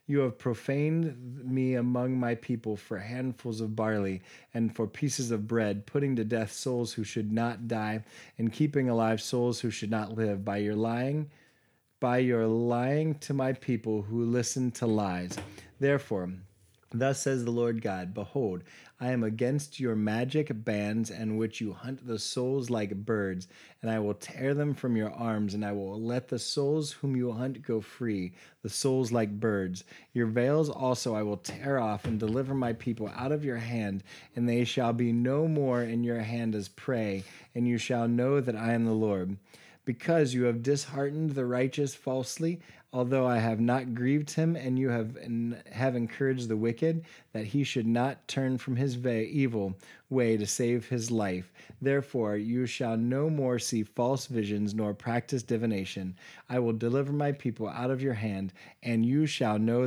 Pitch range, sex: 110-130 Hz, male